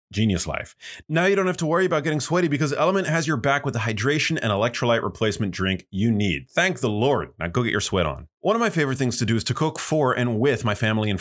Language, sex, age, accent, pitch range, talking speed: English, male, 30-49, American, 105-145 Hz, 270 wpm